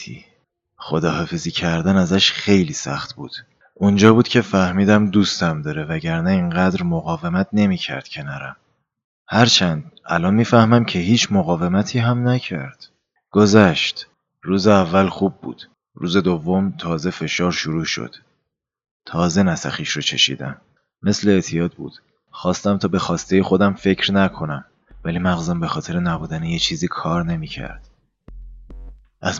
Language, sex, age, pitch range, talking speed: Persian, male, 30-49, 85-100 Hz, 125 wpm